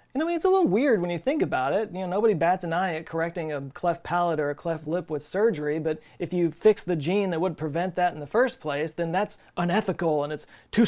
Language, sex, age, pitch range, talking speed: English, male, 30-49, 155-200 Hz, 270 wpm